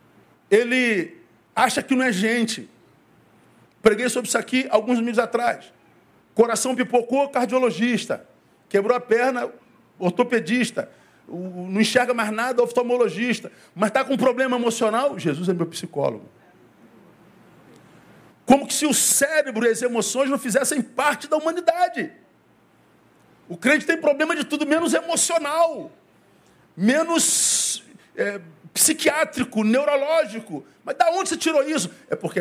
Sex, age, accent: male, 50-69, Brazilian